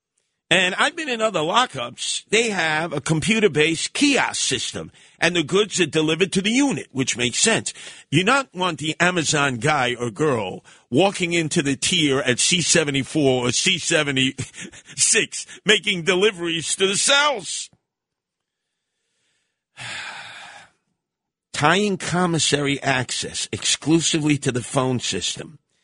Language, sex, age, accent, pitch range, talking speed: English, male, 50-69, American, 145-220 Hz, 120 wpm